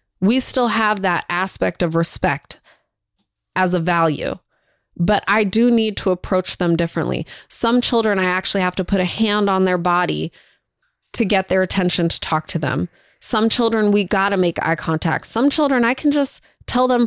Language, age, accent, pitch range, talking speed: English, 20-39, American, 180-230 Hz, 185 wpm